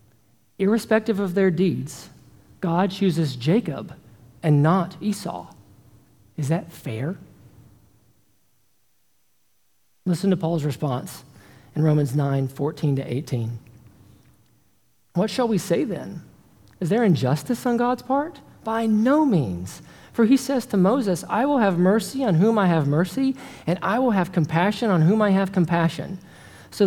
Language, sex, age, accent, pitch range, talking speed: English, male, 40-59, American, 140-200 Hz, 140 wpm